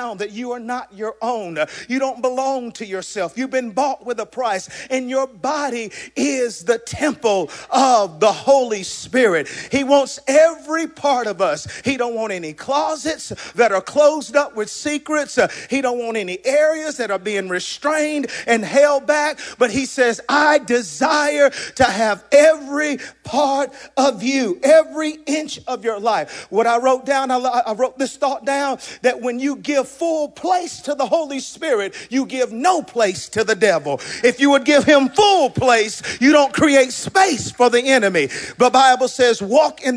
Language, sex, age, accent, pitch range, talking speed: English, male, 40-59, American, 210-280 Hz, 175 wpm